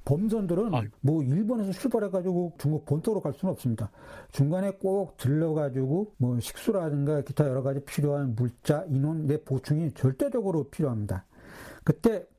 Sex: male